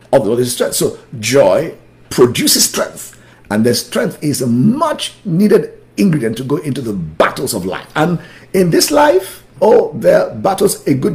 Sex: male